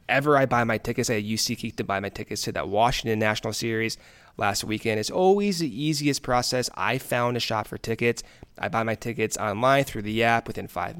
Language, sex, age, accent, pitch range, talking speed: English, male, 20-39, American, 110-140 Hz, 220 wpm